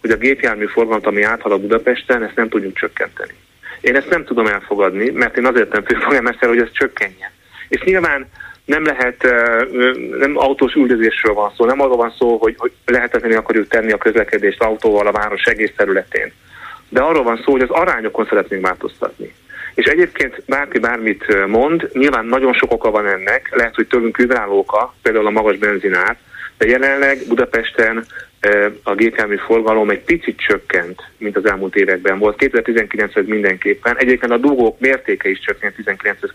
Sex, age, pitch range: male, 30-49, 105-130 Hz